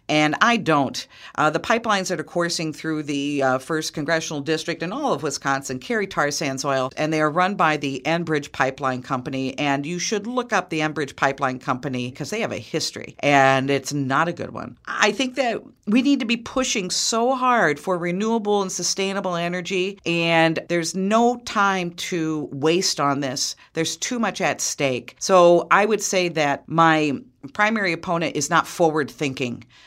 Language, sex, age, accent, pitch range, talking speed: English, female, 50-69, American, 140-180 Hz, 185 wpm